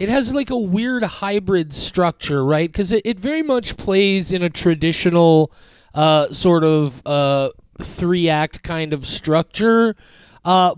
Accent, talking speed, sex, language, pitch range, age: American, 145 wpm, male, English, 145-190 Hz, 30-49